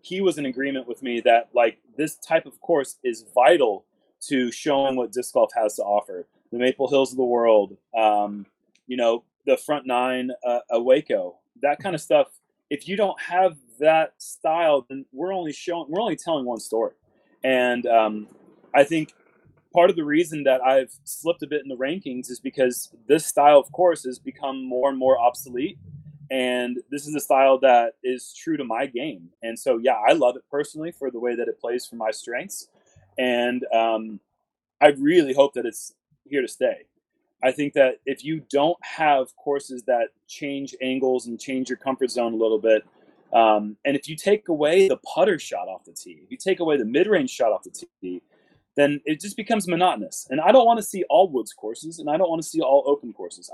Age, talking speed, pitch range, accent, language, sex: 30-49, 205 wpm, 125-155 Hz, American, English, male